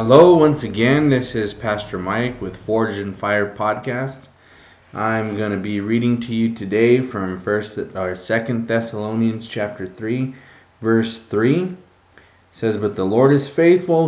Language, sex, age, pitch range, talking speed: English, male, 20-39, 100-115 Hz, 155 wpm